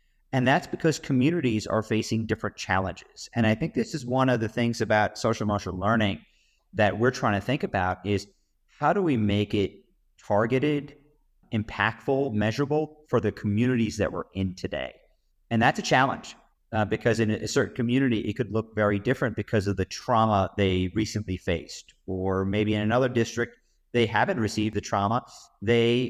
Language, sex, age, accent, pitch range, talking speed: English, male, 40-59, American, 100-120 Hz, 175 wpm